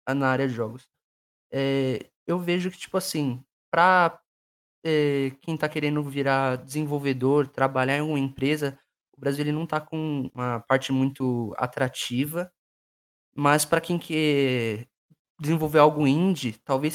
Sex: male